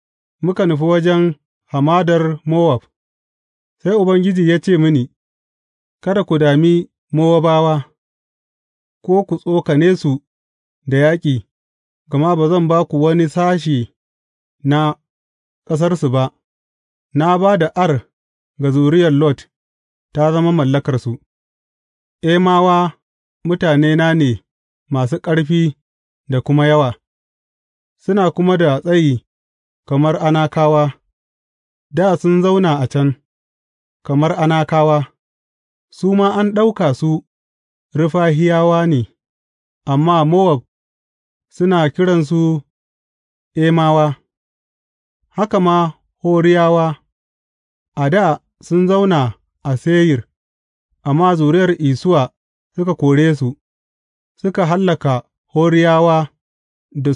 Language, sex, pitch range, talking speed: English, male, 120-170 Hz, 80 wpm